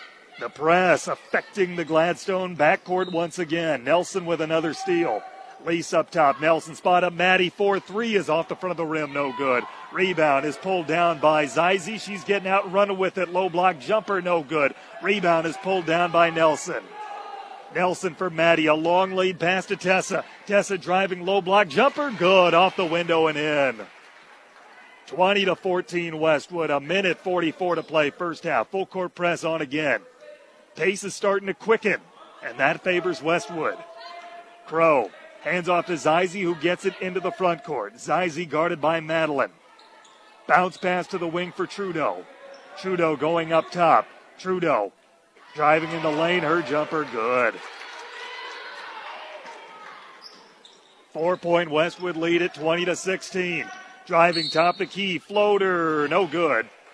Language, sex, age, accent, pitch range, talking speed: English, male, 40-59, American, 165-195 Hz, 155 wpm